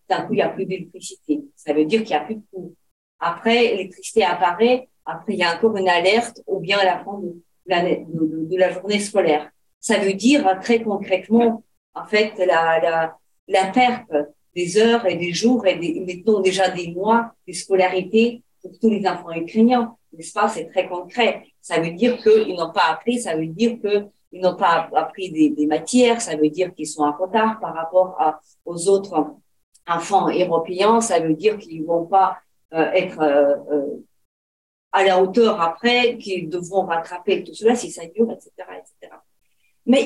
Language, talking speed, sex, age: French, 190 wpm, female, 40-59